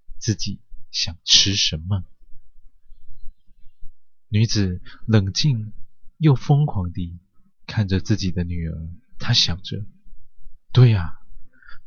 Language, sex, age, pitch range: Chinese, male, 20-39, 95-115 Hz